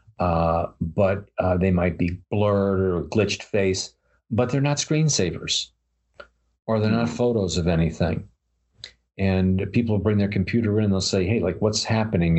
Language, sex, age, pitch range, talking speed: English, male, 50-69, 90-105 Hz, 165 wpm